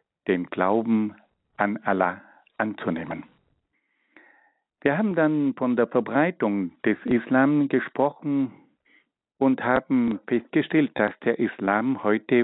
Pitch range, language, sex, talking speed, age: 115-140 Hz, German, male, 100 wpm, 60-79